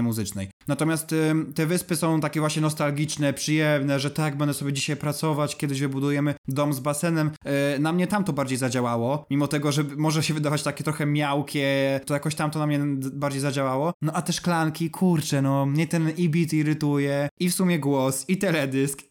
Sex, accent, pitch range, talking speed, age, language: male, native, 140-160 Hz, 190 wpm, 20-39, Polish